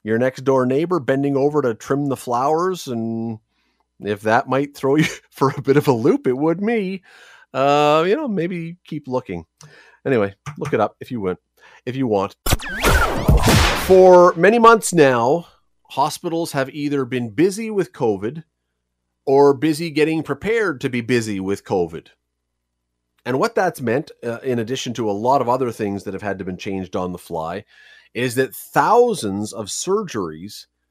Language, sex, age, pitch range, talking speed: English, male, 40-59, 110-145 Hz, 175 wpm